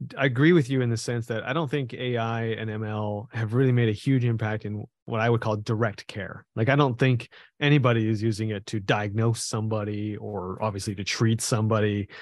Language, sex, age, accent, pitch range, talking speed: English, male, 30-49, American, 105-125 Hz, 210 wpm